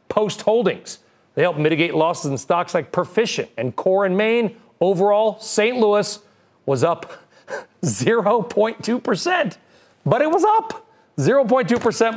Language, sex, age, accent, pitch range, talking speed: English, male, 40-59, American, 160-215 Hz, 125 wpm